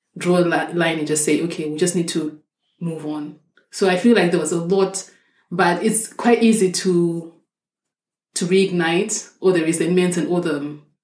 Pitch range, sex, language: 165-195 Hz, female, English